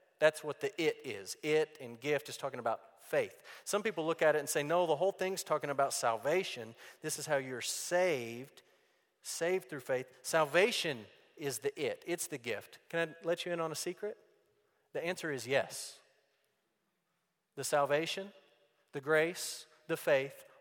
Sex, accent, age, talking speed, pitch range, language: male, American, 40-59, 170 wpm, 150-205 Hz, English